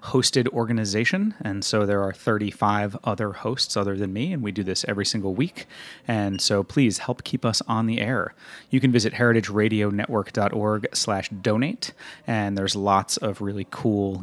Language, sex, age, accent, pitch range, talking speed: English, male, 30-49, American, 100-125 Hz, 170 wpm